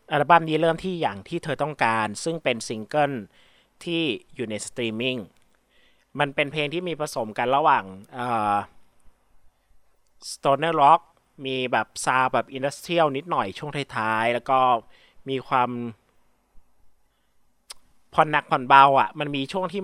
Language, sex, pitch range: Thai, male, 125-160 Hz